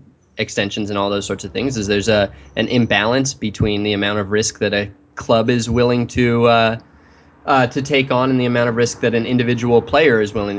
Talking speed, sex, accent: 220 wpm, male, American